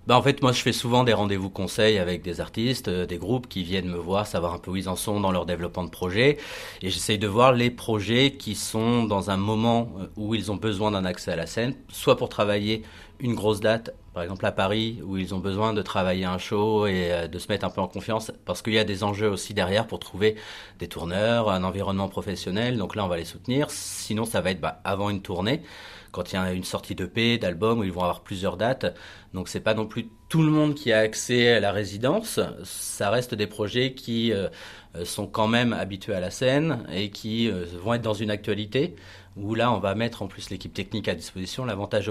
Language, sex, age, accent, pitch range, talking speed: French, male, 30-49, French, 95-115 Hz, 240 wpm